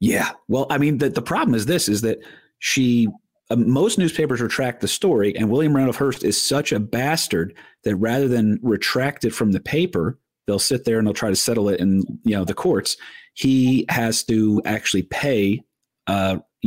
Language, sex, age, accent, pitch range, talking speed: English, male, 40-59, American, 100-130 Hz, 195 wpm